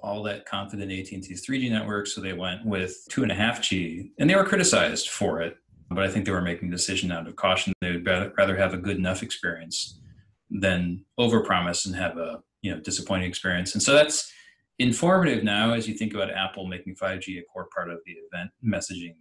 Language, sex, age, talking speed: English, male, 30-49, 205 wpm